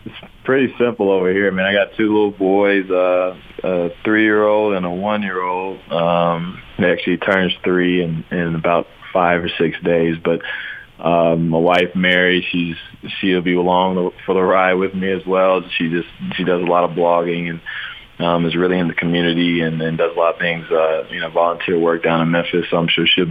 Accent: American